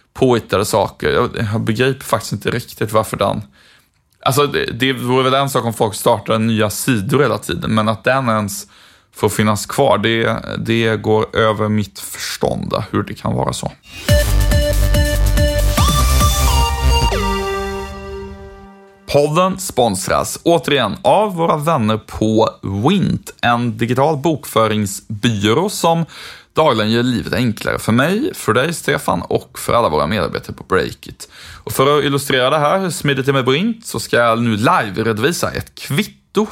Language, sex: Swedish, male